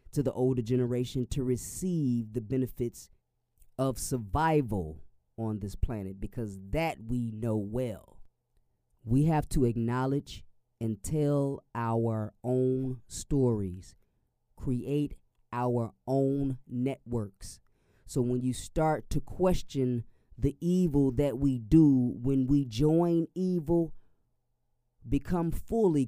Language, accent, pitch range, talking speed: English, American, 120-150 Hz, 110 wpm